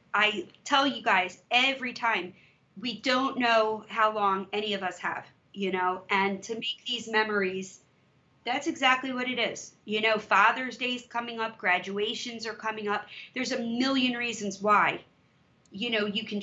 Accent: American